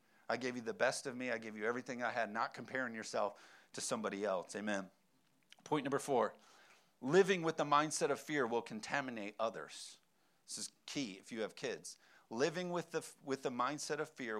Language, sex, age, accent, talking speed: English, male, 40-59, American, 195 wpm